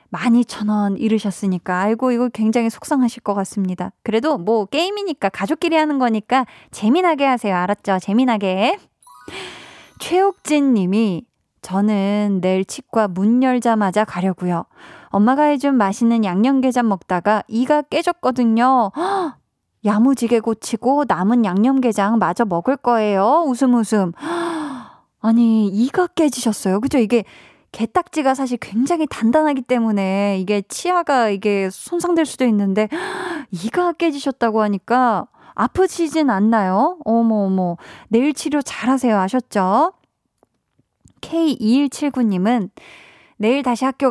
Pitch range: 205-280 Hz